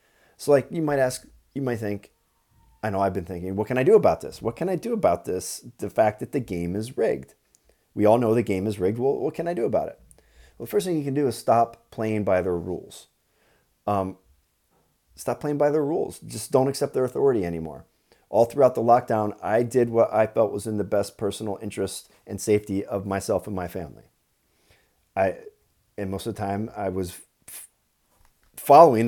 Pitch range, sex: 100-120 Hz, male